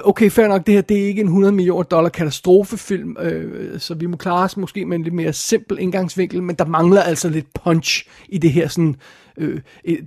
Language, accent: Danish, native